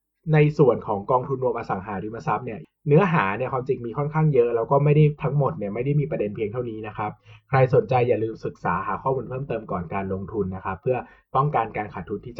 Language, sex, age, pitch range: Thai, male, 20-39, 115-155 Hz